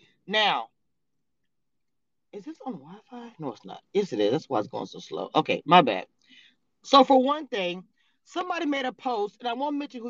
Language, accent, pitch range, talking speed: English, American, 210-330 Hz, 195 wpm